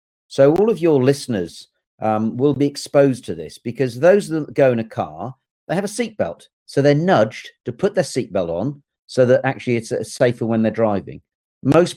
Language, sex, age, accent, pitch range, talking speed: English, male, 50-69, British, 115-155 Hz, 195 wpm